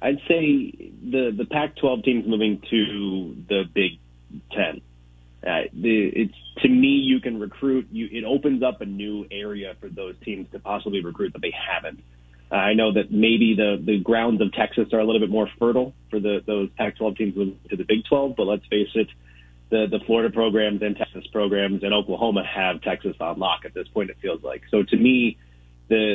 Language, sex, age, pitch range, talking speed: English, male, 30-49, 95-115 Hz, 200 wpm